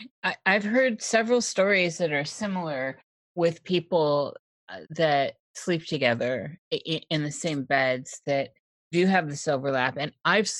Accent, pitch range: American, 135-165 Hz